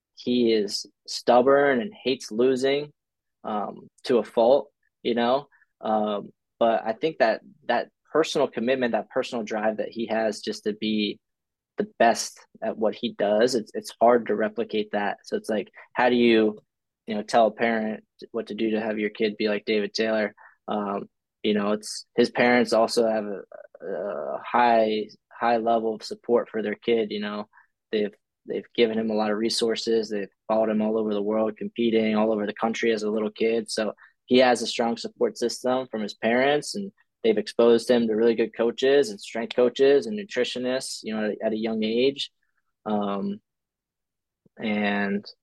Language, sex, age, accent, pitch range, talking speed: English, male, 20-39, American, 110-120 Hz, 185 wpm